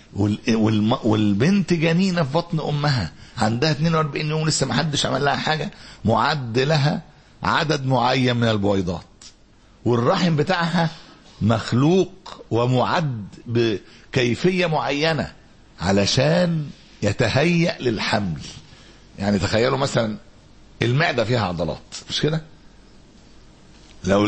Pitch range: 105-150 Hz